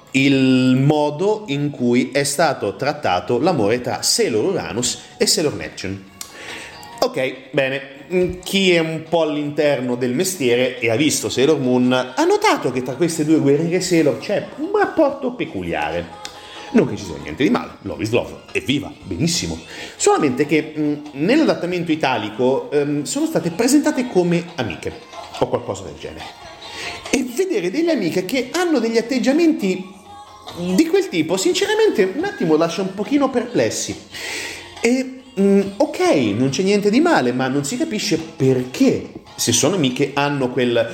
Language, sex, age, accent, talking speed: Italian, male, 30-49, native, 150 wpm